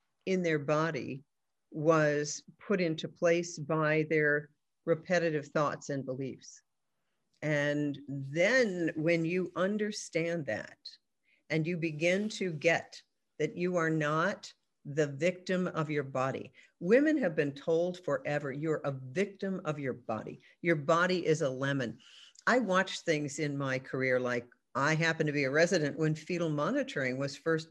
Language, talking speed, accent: English, 145 wpm, American